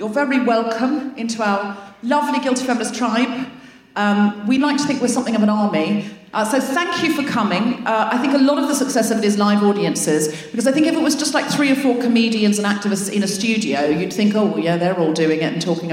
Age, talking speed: 40-59, 245 wpm